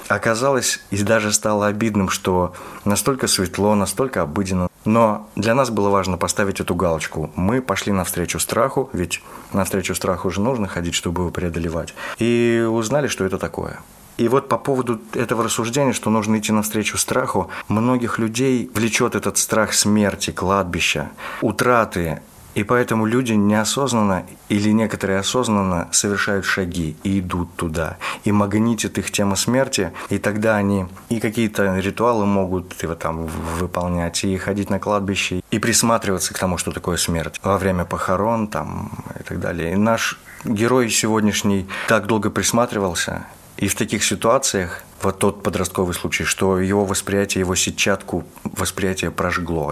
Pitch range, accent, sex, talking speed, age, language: 90-110 Hz, native, male, 145 wpm, 30-49, Russian